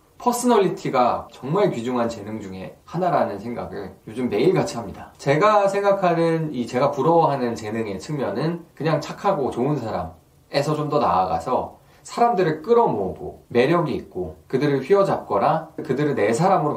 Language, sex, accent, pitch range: Korean, male, native, 120-180 Hz